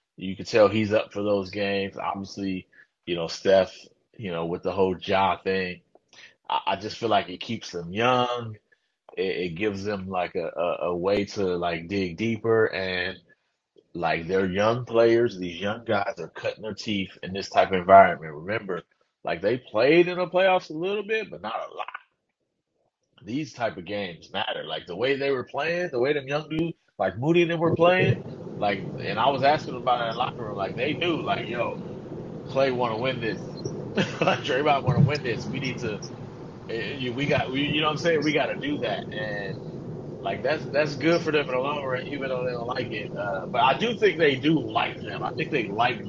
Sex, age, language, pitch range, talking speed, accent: male, 30-49, English, 100-145 Hz, 220 wpm, American